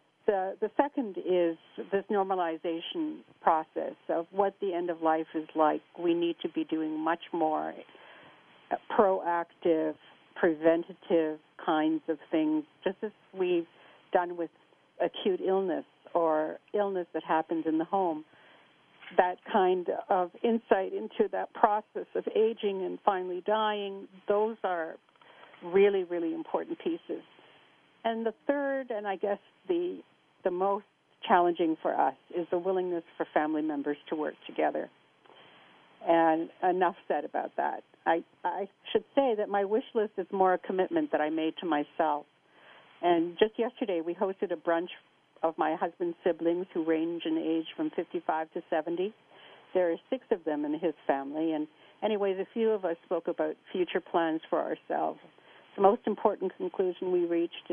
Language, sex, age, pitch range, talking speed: English, female, 60-79, 165-210 Hz, 155 wpm